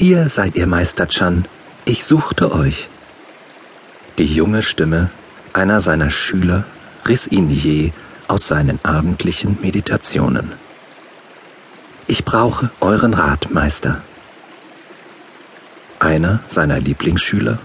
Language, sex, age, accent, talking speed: German, male, 50-69, German, 100 wpm